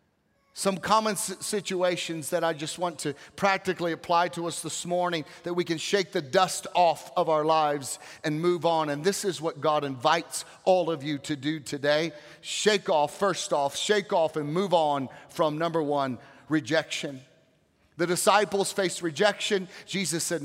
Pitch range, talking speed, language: 160-195 Hz, 170 wpm, English